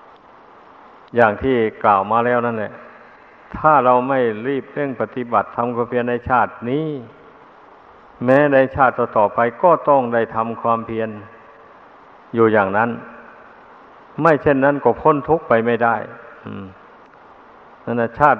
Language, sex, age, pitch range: Thai, male, 60-79, 115-130 Hz